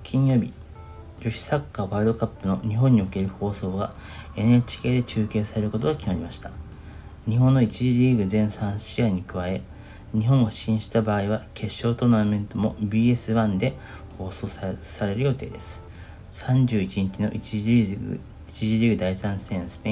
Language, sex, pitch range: Japanese, male, 95-115 Hz